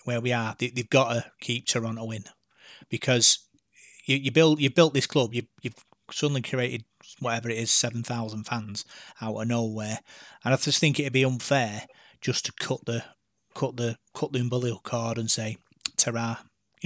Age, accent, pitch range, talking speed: 30-49, British, 115-135 Hz, 180 wpm